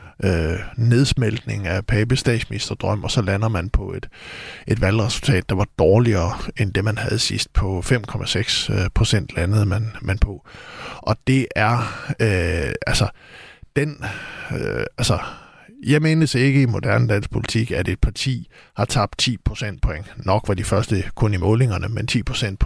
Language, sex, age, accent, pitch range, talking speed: Danish, male, 60-79, native, 100-125 Hz, 160 wpm